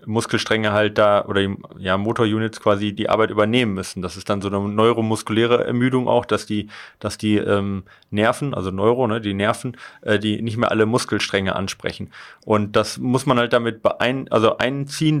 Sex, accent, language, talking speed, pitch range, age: male, German, German, 185 wpm, 105-125 Hz, 30-49